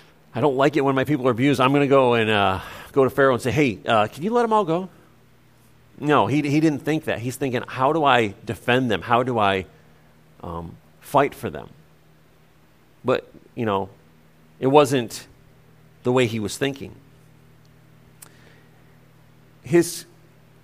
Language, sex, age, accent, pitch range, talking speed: English, male, 40-59, American, 100-140 Hz, 170 wpm